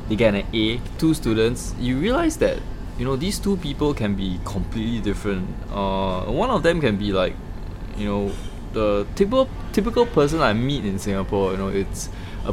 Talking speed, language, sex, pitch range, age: 185 wpm, English, male, 95-115 Hz, 20-39